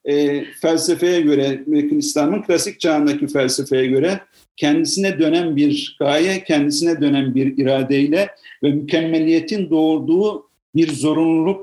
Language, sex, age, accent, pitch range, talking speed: Turkish, male, 50-69, native, 155-205 Hz, 110 wpm